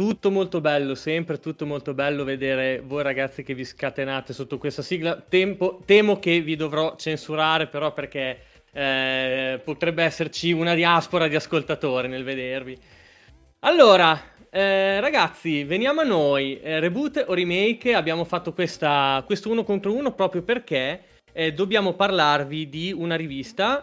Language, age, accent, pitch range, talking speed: Italian, 20-39, native, 140-185 Hz, 140 wpm